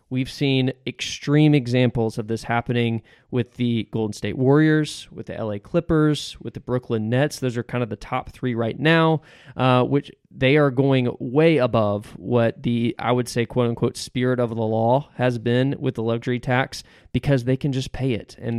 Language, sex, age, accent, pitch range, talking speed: English, male, 20-39, American, 120-140 Hz, 195 wpm